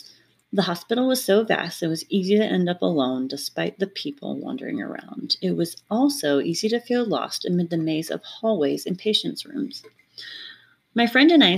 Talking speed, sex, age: 185 wpm, female, 30-49